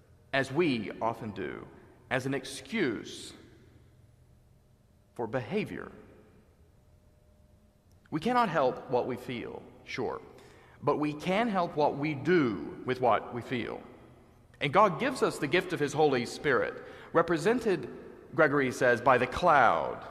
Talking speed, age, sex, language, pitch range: 130 wpm, 40-59, male, English, 120-180 Hz